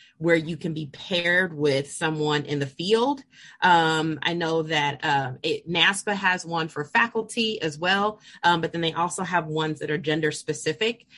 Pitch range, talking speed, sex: 150-175 Hz, 175 wpm, female